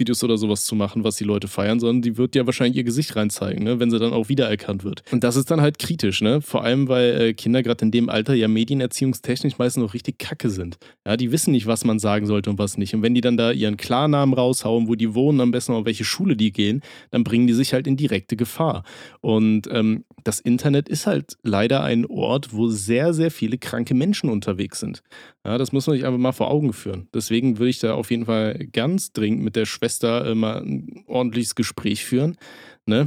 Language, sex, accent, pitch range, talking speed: German, male, German, 110-130 Hz, 240 wpm